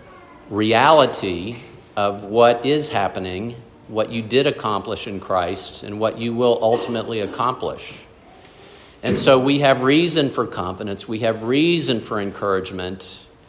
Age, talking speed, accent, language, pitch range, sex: 50-69, 130 wpm, American, English, 95-130 Hz, male